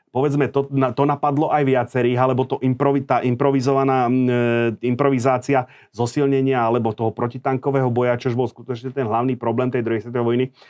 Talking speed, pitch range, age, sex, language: 145 wpm, 120-140 Hz, 30-49, male, Slovak